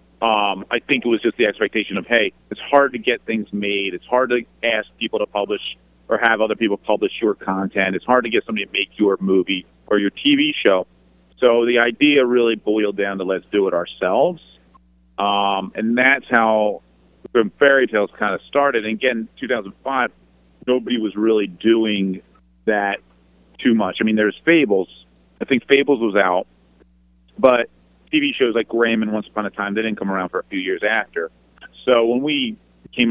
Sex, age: male, 40-59